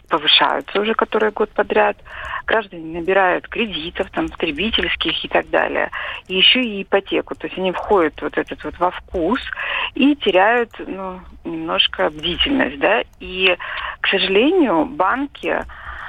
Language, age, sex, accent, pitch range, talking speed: Russian, 40-59, female, native, 170-240 Hz, 135 wpm